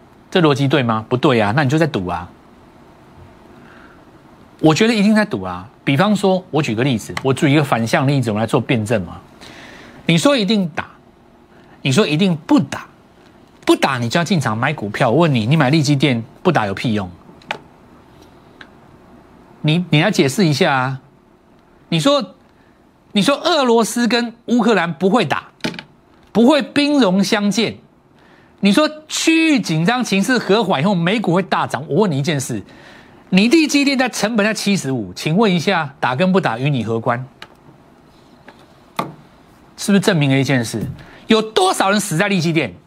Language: Chinese